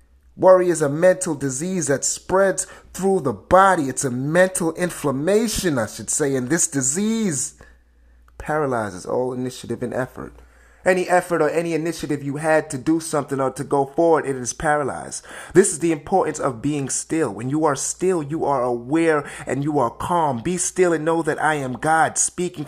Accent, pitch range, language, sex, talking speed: American, 120-175 Hz, English, male, 185 wpm